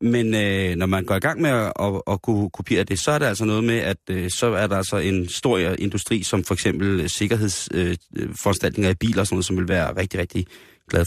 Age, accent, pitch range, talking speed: 30-49, native, 95-130 Hz, 245 wpm